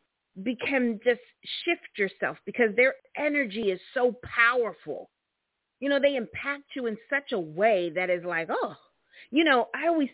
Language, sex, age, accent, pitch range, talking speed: English, female, 40-59, American, 190-255 Hz, 160 wpm